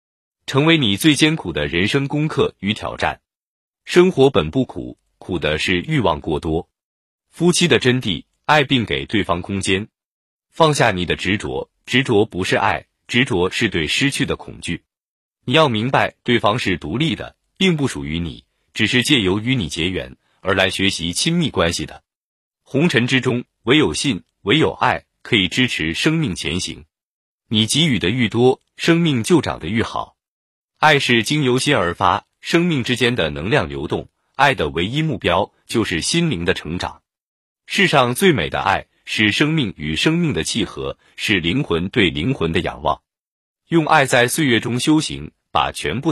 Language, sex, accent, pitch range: Chinese, male, native, 95-150 Hz